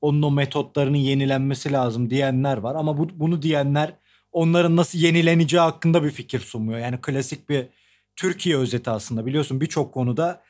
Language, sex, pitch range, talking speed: Turkish, male, 135-175 Hz, 150 wpm